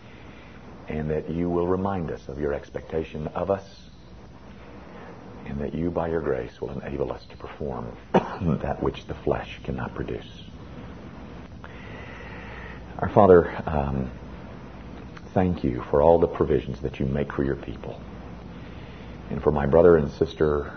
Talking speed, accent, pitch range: 140 wpm, American, 65-85 Hz